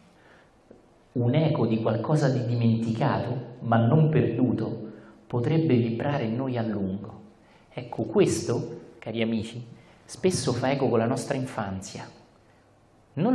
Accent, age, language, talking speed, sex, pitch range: native, 40-59, Italian, 120 wpm, male, 105-130 Hz